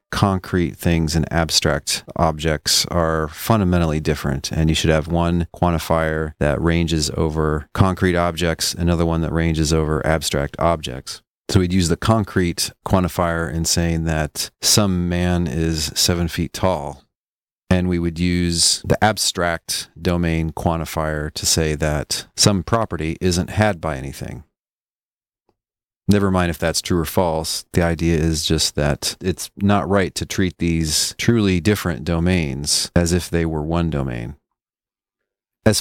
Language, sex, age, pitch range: English, male, 40-59, 80-95 Hz